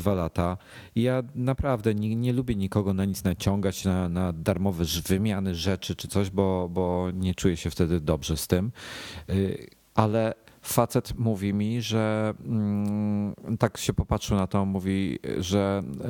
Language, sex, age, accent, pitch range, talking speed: Polish, male, 40-59, native, 90-110 Hz, 145 wpm